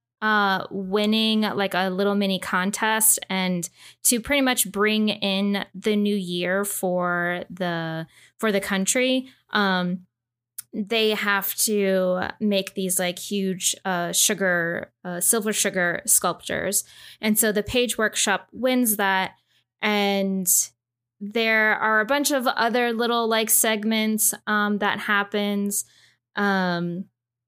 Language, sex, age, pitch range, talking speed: English, female, 10-29, 185-215 Hz, 120 wpm